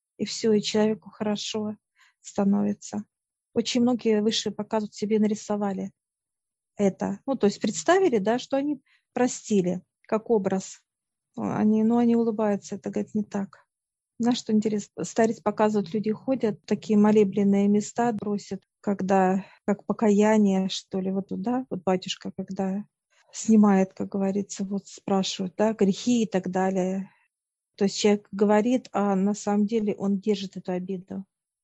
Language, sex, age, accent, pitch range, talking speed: Russian, female, 40-59, native, 195-220 Hz, 140 wpm